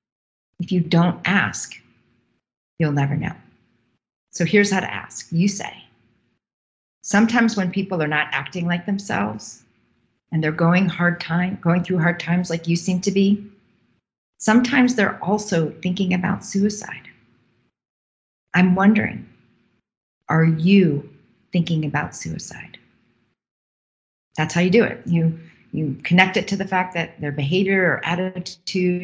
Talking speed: 135 wpm